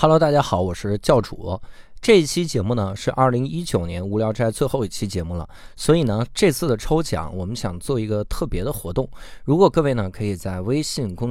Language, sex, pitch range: Chinese, male, 100-140 Hz